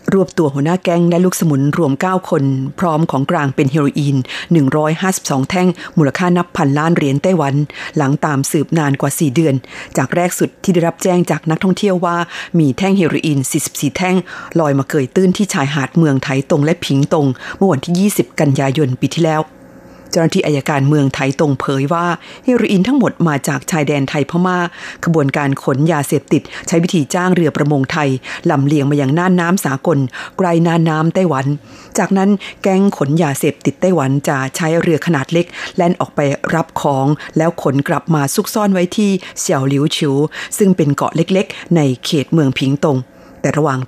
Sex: female